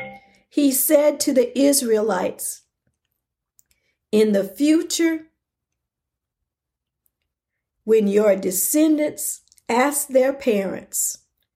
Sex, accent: female, American